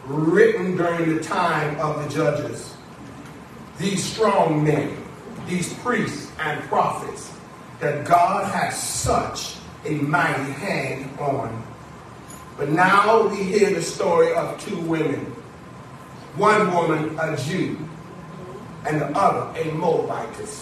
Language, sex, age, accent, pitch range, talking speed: English, male, 40-59, American, 160-210 Hz, 115 wpm